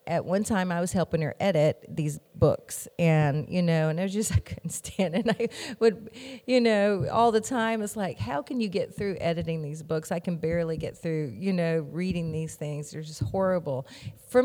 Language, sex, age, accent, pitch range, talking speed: English, female, 40-59, American, 155-200 Hz, 215 wpm